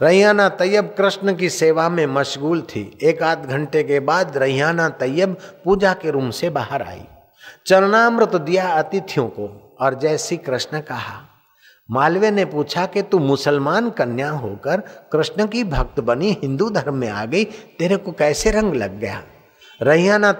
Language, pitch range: Hindi, 145-200 Hz